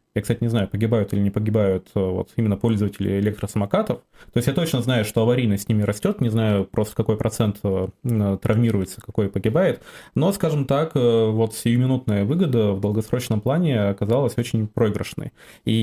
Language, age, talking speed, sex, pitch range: Russian, 20-39, 160 wpm, male, 105-120 Hz